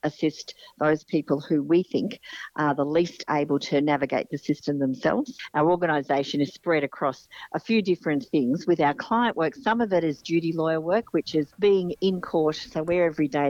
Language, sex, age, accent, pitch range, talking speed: English, female, 50-69, Australian, 145-180 Hz, 195 wpm